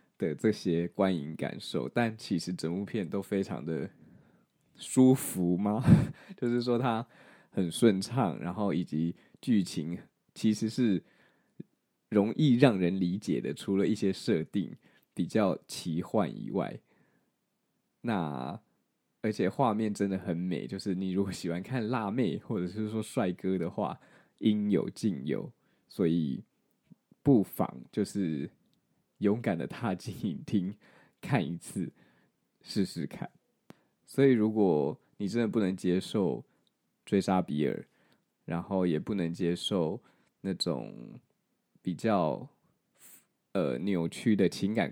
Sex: male